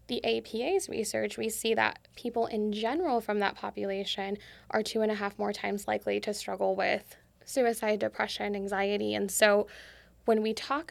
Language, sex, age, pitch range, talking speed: English, female, 10-29, 200-230 Hz, 170 wpm